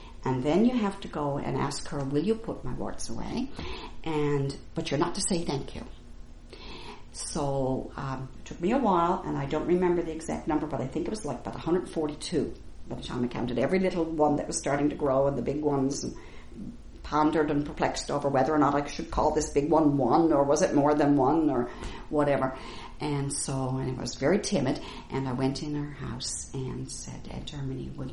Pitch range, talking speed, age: 130-175 Hz, 220 wpm, 60-79